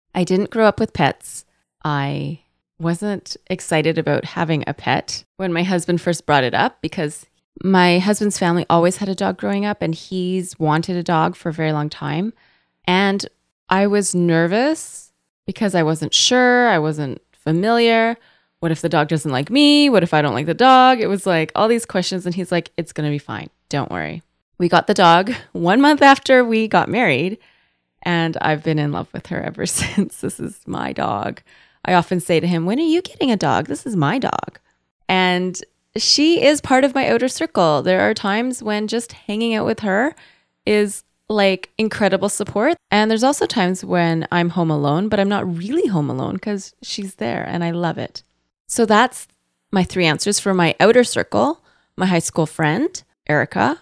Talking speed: 195 wpm